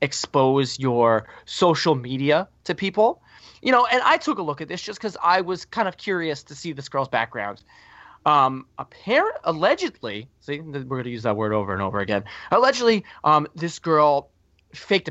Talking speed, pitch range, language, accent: 180 wpm, 135-170 Hz, English, American